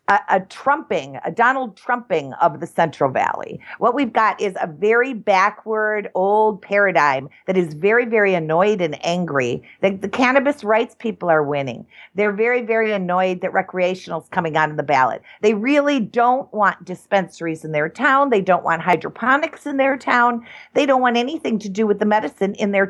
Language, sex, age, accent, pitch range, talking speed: English, female, 50-69, American, 185-260 Hz, 185 wpm